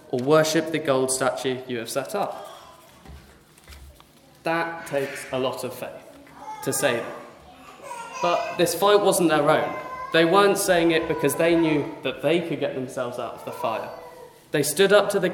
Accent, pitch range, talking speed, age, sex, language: British, 140-175 Hz, 175 wpm, 20-39, male, English